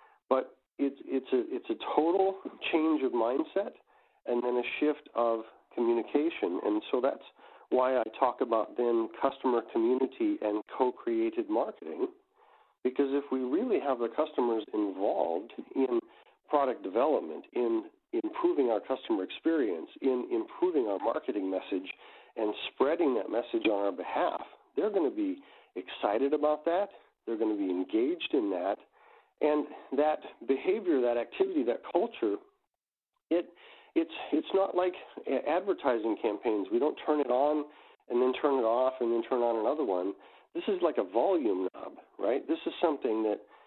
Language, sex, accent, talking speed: English, male, American, 155 wpm